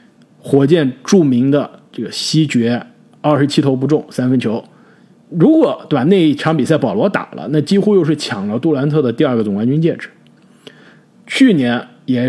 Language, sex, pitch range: Chinese, male, 125-205 Hz